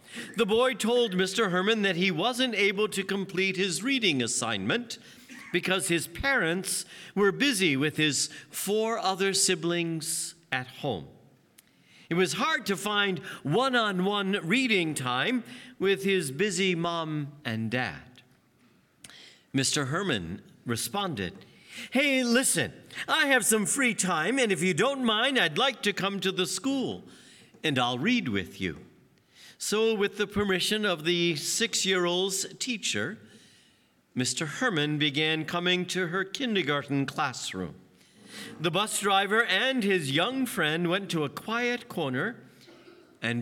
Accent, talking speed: American, 135 wpm